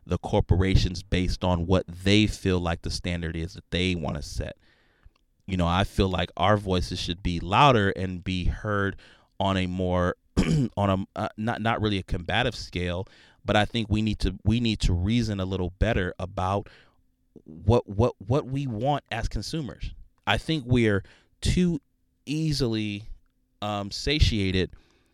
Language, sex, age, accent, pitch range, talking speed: English, male, 30-49, American, 90-105 Hz, 165 wpm